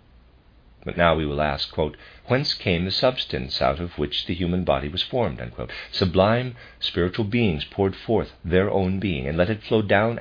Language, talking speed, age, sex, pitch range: English, 175 wpm, 50-69, male, 70-105 Hz